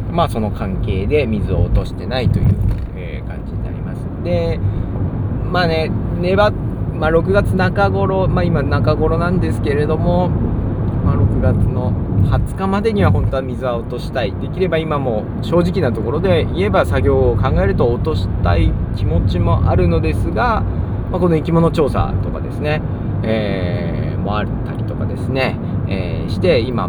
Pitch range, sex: 95-120 Hz, male